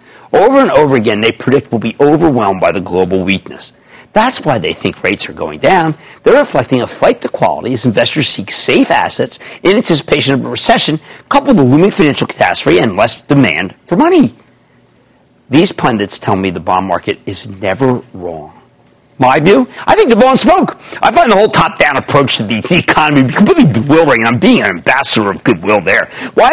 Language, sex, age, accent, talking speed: English, male, 50-69, American, 195 wpm